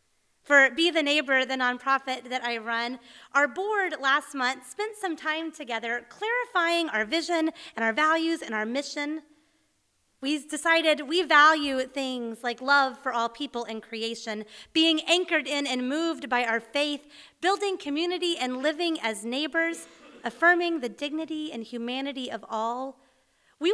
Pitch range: 230-320 Hz